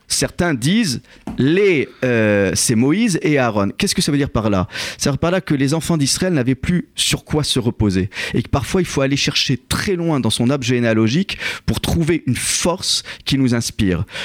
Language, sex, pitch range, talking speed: French, male, 110-150 Hz, 210 wpm